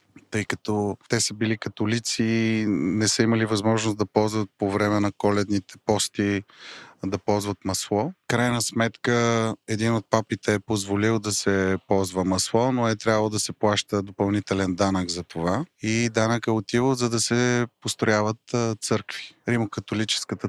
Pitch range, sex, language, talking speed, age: 100-115 Hz, male, Bulgarian, 150 wpm, 30-49